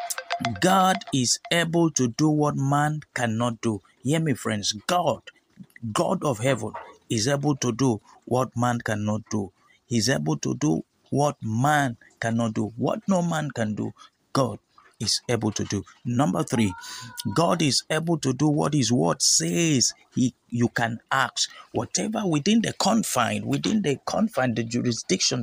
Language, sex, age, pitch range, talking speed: English, male, 50-69, 115-150 Hz, 155 wpm